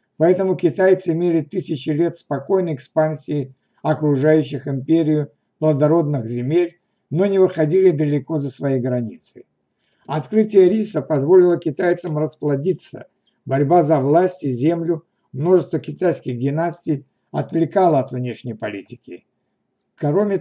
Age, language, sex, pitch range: 60-79, Russian, male, 140-180 Hz